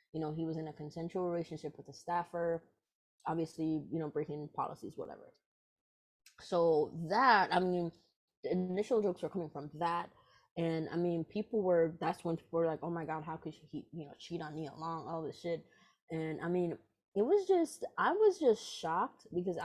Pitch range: 155-185 Hz